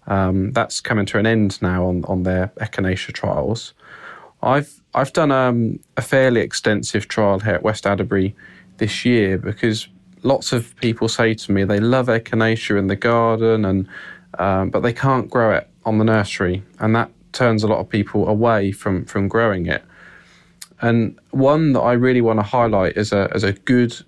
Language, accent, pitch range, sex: English, British, 100-120 Hz, male